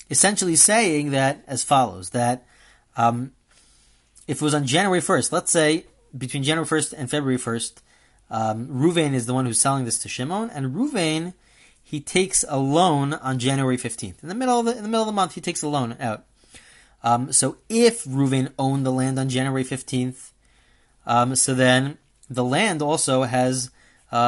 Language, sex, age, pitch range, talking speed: English, male, 30-49, 125-185 Hz, 185 wpm